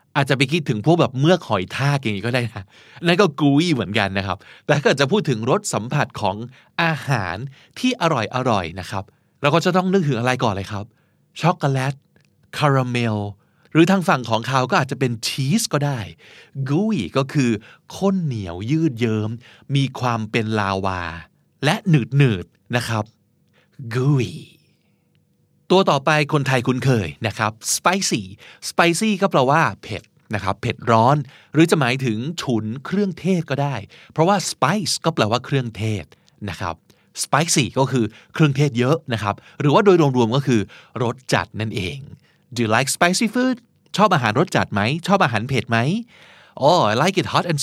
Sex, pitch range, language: male, 115-165 Hz, Thai